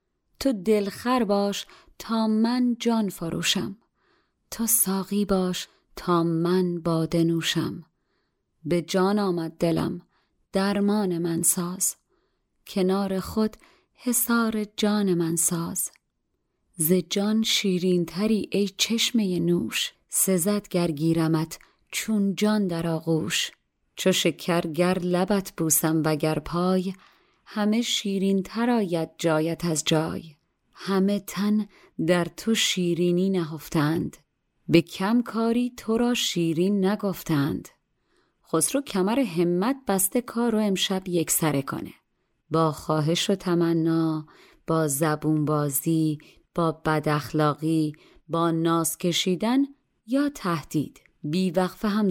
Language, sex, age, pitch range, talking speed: Persian, female, 30-49, 165-205 Hz, 105 wpm